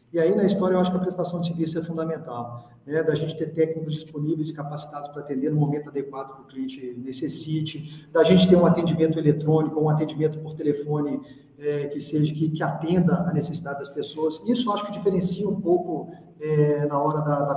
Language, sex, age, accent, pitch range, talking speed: Portuguese, male, 40-59, Brazilian, 140-170 Hz, 210 wpm